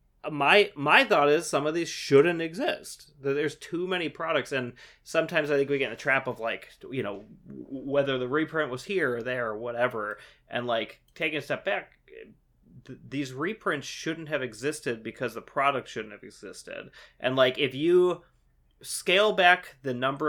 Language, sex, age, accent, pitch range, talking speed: English, male, 30-49, American, 125-155 Hz, 175 wpm